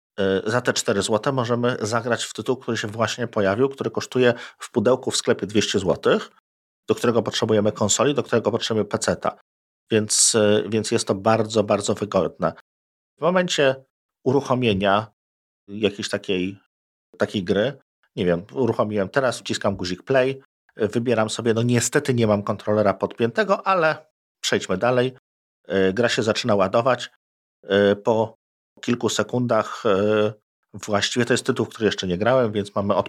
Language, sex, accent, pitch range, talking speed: Polish, male, native, 100-120 Hz, 140 wpm